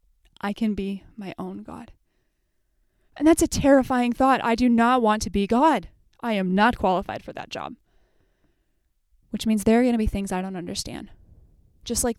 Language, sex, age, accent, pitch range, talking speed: English, female, 20-39, American, 190-235 Hz, 185 wpm